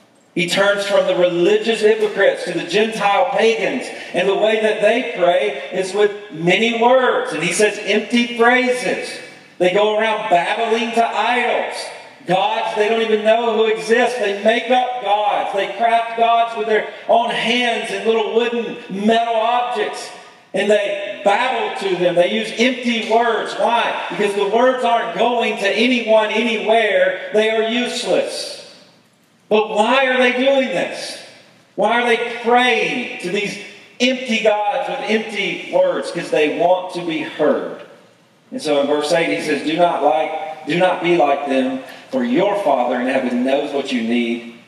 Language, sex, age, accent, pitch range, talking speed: English, male, 50-69, American, 175-230 Hz, 165 wpm